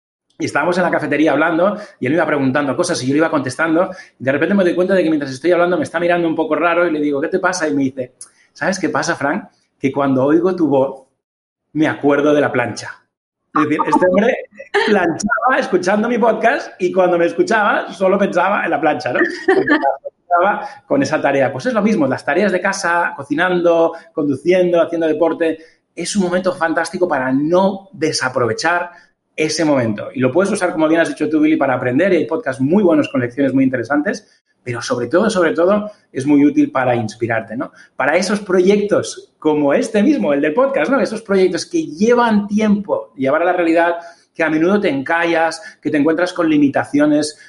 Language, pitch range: Spanish, 145-185 Hz